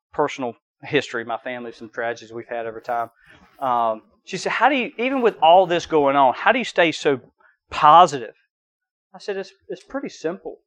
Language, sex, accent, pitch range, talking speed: English, male, American, 130-165 Hz, 190 wpm